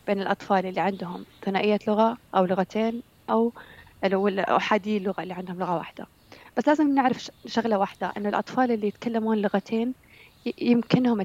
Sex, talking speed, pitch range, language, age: female, 140 wpm, 190-225 Hz, Arabic, 20-39